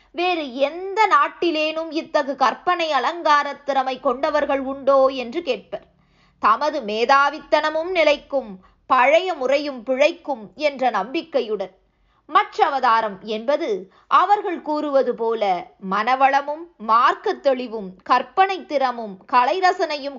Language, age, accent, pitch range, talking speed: Tamil, 20-39, native, 260-330 Hz, 85 wpm